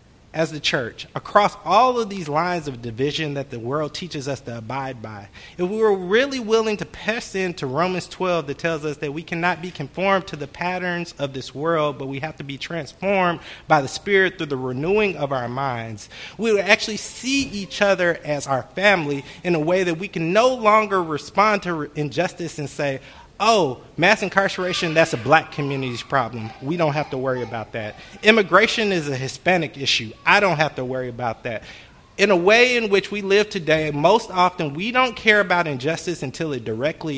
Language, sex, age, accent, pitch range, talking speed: English, male, 30-49, American, 135-190 Hz, 200 wpm